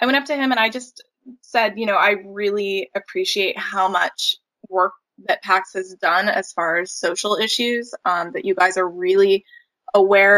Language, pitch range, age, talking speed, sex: English, 190-245 Hz, 20-39, 190 wpm, female